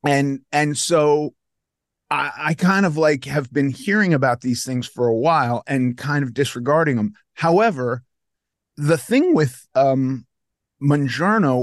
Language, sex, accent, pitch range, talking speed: English, male, American, 125-155 Hz, 145 wpm